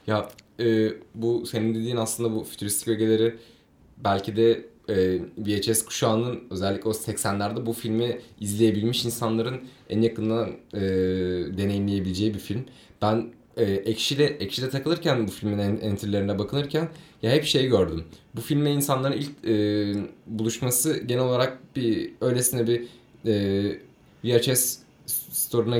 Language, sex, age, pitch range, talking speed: Turkish, male, 20-39, 100-120 Hz, 120 wpm